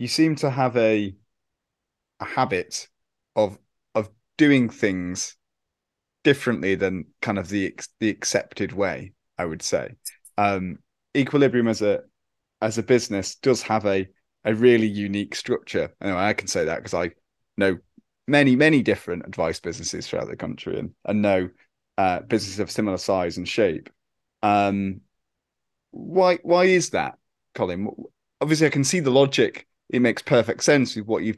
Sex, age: male, 30-49